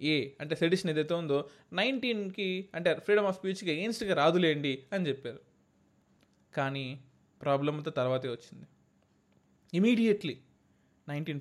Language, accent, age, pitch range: Telugu, native, 20-39, 130-170 Hz